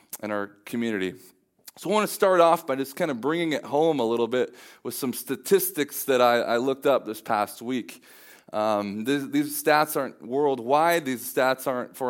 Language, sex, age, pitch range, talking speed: English, male, 30-49, 120-160 Hz, 200 wpm